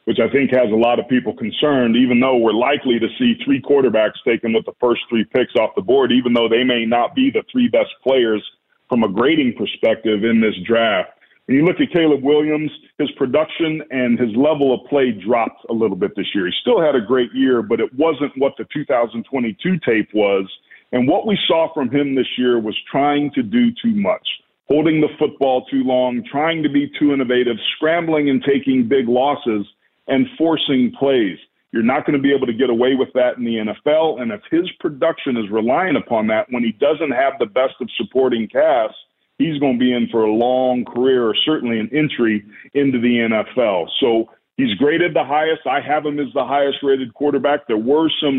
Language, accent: English, American